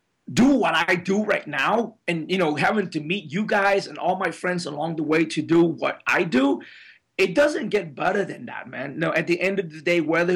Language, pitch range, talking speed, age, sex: English, 160-210 Hz, 240 wpm, 30-49, male